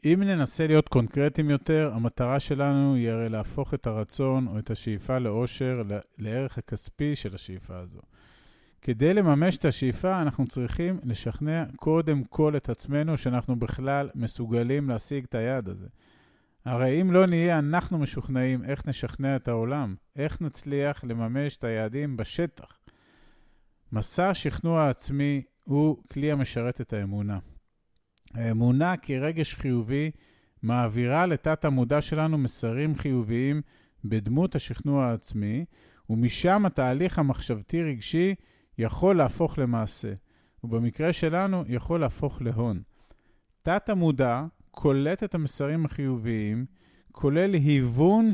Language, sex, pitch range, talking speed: Hebrew, male, 120-155 Hz, 115 wpm